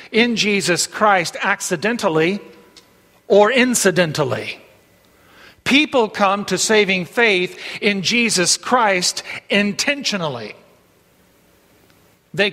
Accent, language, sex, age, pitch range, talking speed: American, English, male, 50-69, 180-225 Hz, 75 wpm